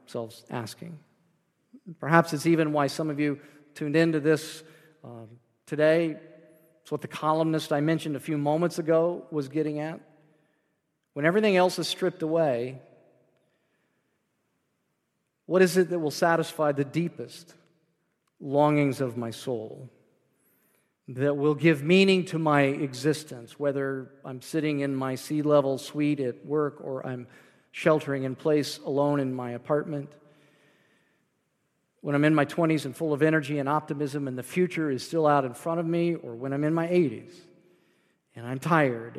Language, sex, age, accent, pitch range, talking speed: English, male, 40-59, American, 135-160 Hz, 155 wpm